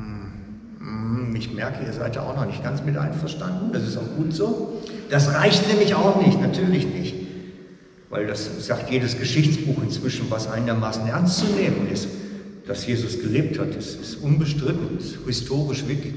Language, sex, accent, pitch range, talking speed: German, male, German, 120-165 Hz, 170 wpm